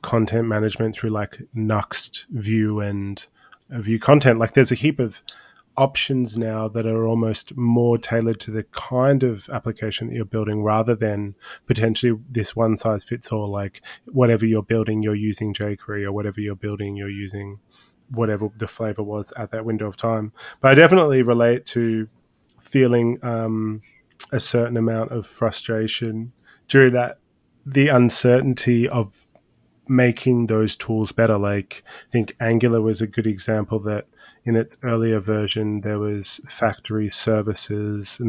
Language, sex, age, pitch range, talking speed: English, male, 20-39, 105-120 Hz, 155 wpm